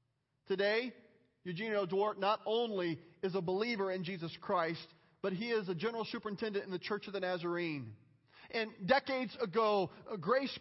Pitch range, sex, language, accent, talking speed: 180-230 Hz, male, English, American, 155 wpm